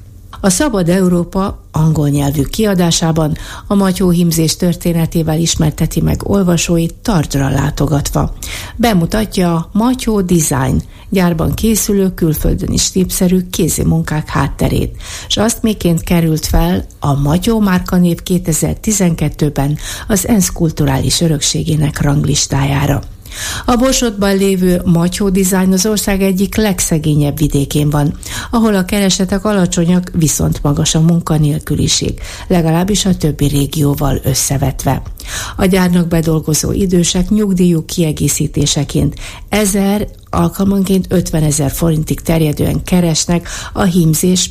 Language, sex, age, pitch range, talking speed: Hungarian, female, 60-79, 145-190 Hz, 110 wpm